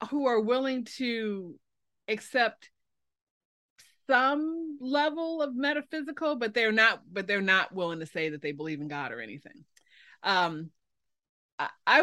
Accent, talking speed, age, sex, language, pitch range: American, 135 wpm, 40-59, female, English, 185-240 Hz